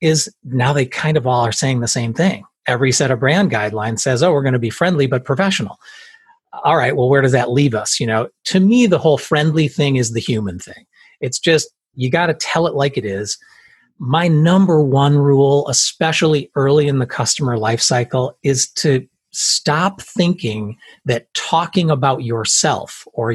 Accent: American